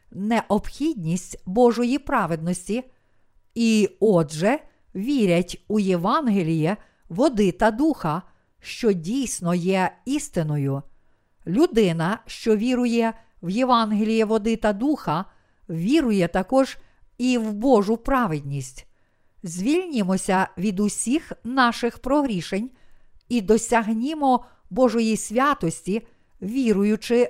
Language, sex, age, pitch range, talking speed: Ukrainian, female, 50-69, 155-240 Hz, 85 wpm